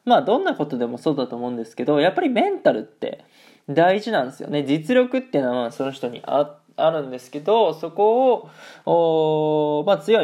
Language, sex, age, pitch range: Japanese, male, 20-39, 130-200 Hz